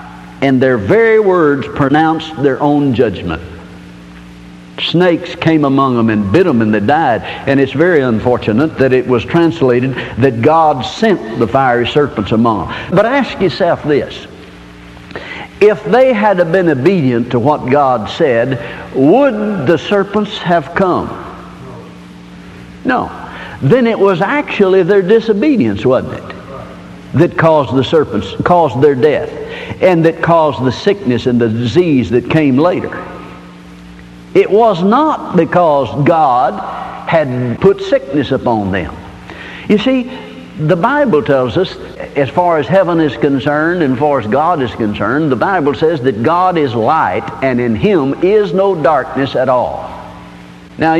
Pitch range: 115-175 Hz